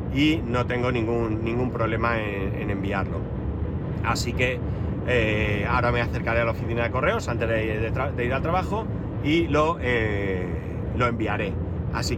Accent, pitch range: Spanish, 100-125 Hz